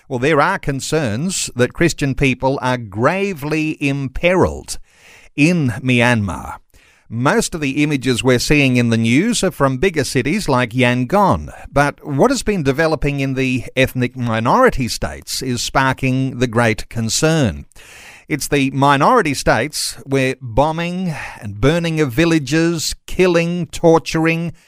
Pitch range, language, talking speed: 125-155 Hz, English, 130 wpm